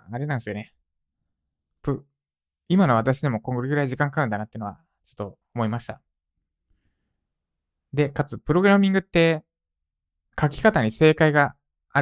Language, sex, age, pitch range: Japanese, male, 20-39, 90-155 Hz